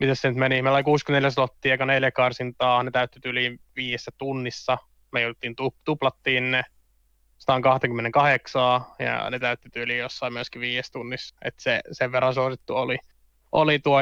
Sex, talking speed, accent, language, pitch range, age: male, 150 wpm, native, Finnish, 125-140 Hz, 20-39